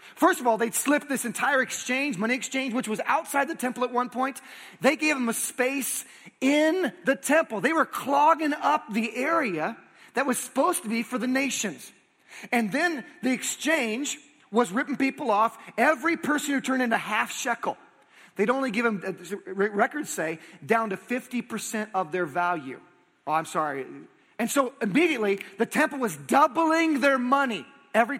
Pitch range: 215-280 Hz